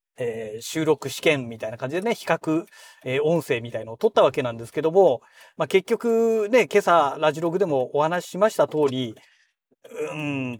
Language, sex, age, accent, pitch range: Japanese, male, 40-59, native, 150-225 Hz